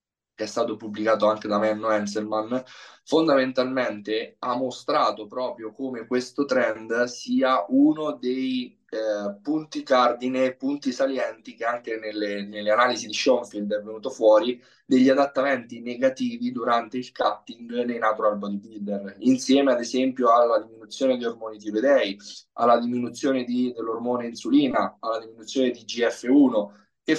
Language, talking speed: Italian, 130 wpm